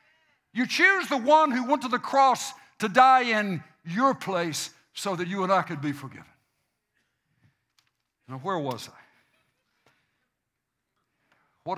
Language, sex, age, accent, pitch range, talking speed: English, male, 60-79, American, 135-195 Hz, 140 wpm